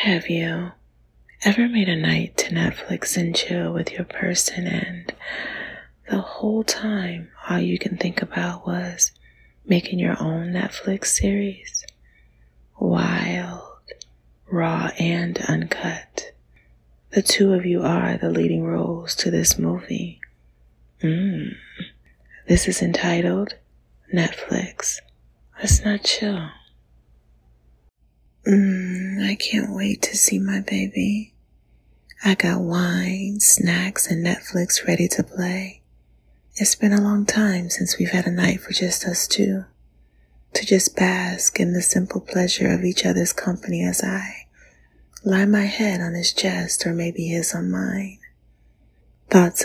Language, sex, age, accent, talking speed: English, female, 30-49, American, 130 wpm